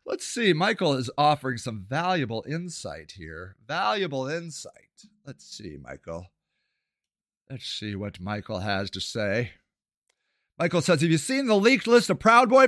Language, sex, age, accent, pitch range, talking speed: English, male, 40-59, American, 185-310 Hz, 150 wpm